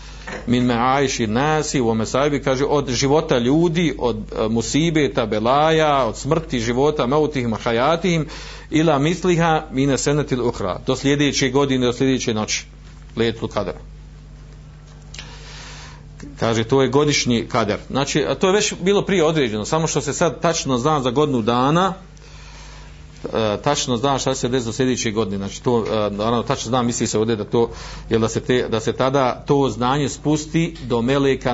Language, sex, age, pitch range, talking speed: Croatian, male, 40-59, 115-145 Hz, 155 wpm